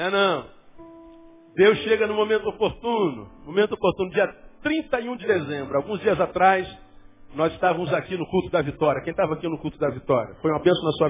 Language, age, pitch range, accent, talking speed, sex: Portuguese, 50-69, 155-195 Hz, Brazilian, 190 wpm, male